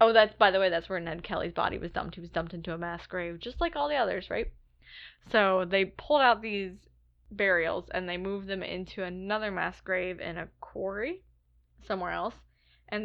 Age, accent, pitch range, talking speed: 10-29, American, 175-210 Hz, 205 wpm